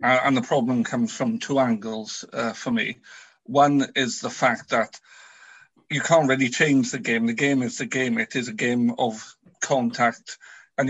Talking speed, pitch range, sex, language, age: 180 wpm, 125-145 Hz, male, English, 50-69